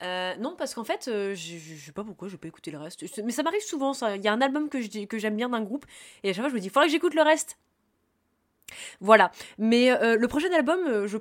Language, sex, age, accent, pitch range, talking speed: French, female, 20-39, French, 180-240 Hz, 280 wpm